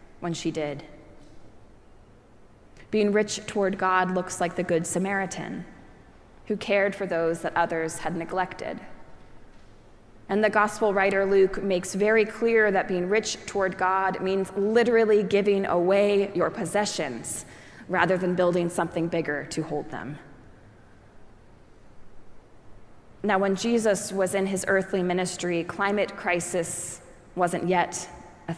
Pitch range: 165-195 Hz